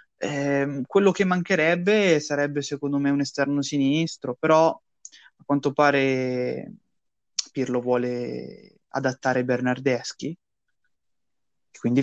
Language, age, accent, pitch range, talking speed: Italian, 20-39, native, 120-140 Hz, 95 wpm